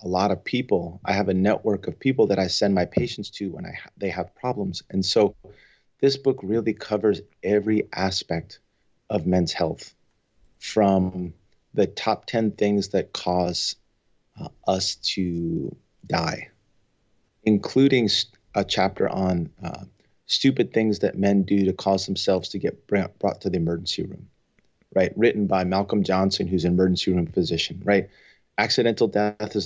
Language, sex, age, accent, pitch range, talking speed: English, male, 30-49, American, 95-115 Hz, 155 wpm